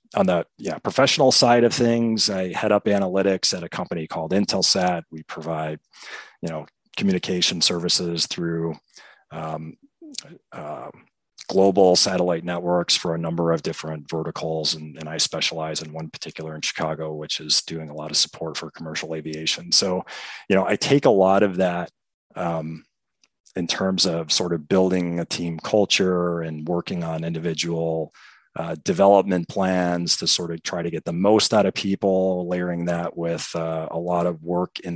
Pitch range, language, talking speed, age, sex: 80-95 Hz, English, 170 wpm, 30-49, male